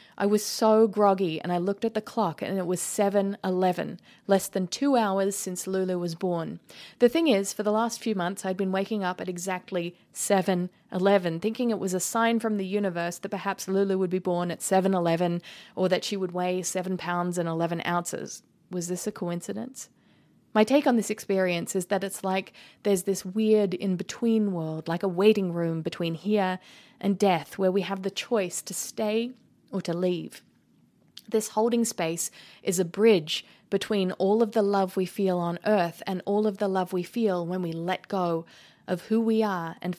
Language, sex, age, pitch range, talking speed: English, female, 30-49, 180-210 Hz, 195 wpm